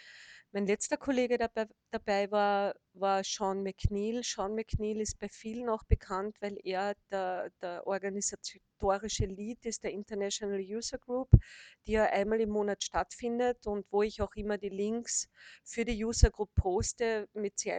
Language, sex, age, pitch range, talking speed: German, female, 40-59, 200-220 Hz, 160 wpm